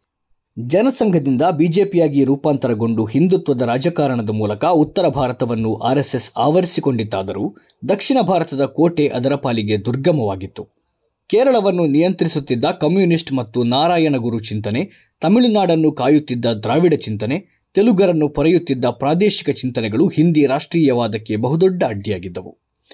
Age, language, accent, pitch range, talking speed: 20-39, Kannada, native, 120-165 Hz, 95 wpm